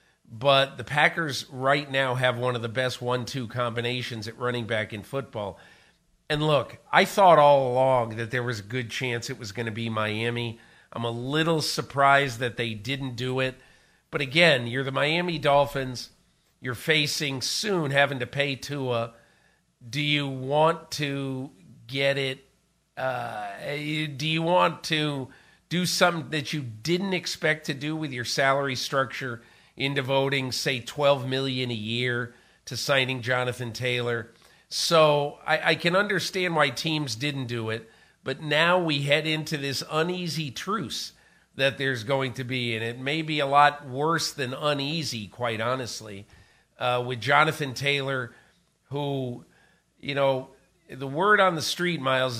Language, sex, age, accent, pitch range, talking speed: English, male, 50-69, American, 120-150 Hz, 160 wpm